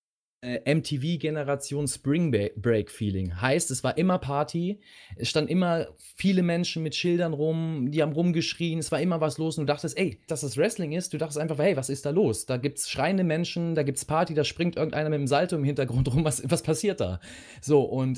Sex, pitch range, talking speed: male, 130-165 Hz, 210 wpm